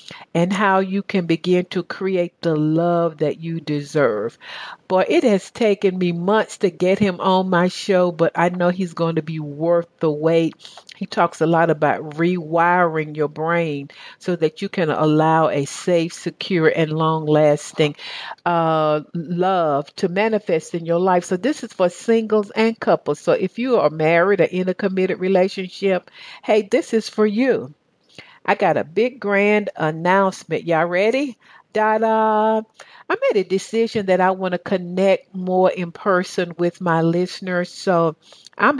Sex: female